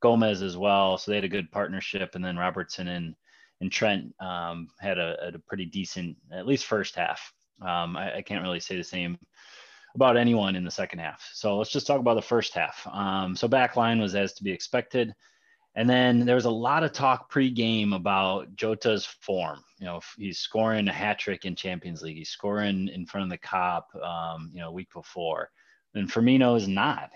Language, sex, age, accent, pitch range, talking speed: English, male, 20-39, American, 90-110 Hz, 210 wpm